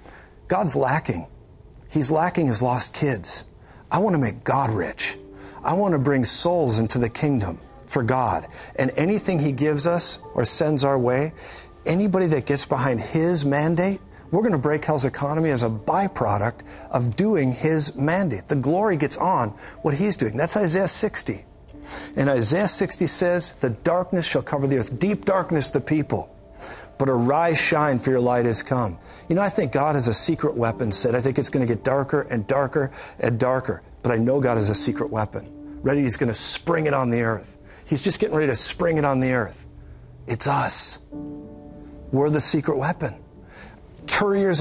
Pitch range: 120-160 Hz